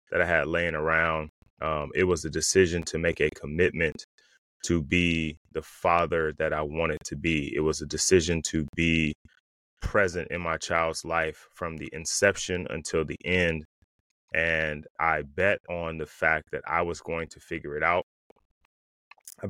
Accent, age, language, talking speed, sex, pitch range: American, 20-39, English, 170 wpm, male, 75-85 Hz